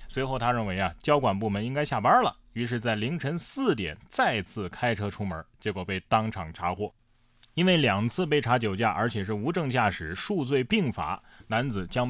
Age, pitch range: 20-39, 100-140 Hz